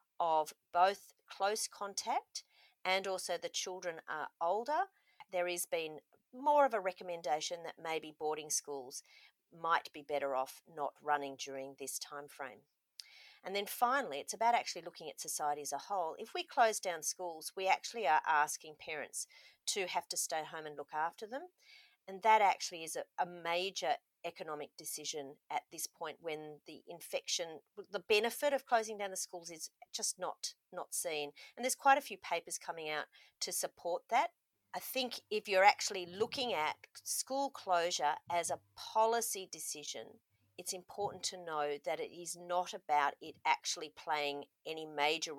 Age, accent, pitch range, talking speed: 40-59, Australian, 150-210 Hz, 170 wpm